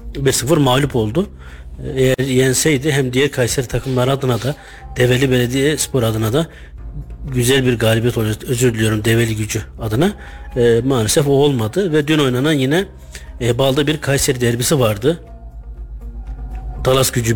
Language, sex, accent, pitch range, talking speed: Turkish, male, native, 115-135 Hz, 140 wpm